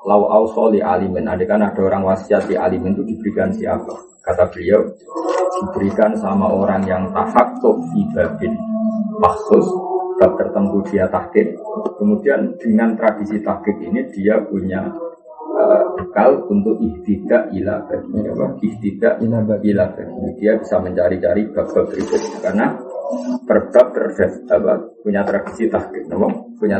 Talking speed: 120 wpm